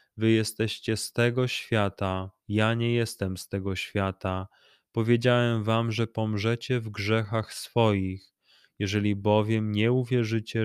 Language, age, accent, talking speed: Polish, 20-39, native, 125 wpm